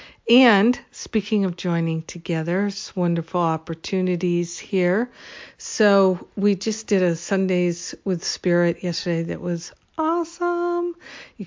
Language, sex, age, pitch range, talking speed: English, female, 50-69, 170-195 Hz, 115 wpm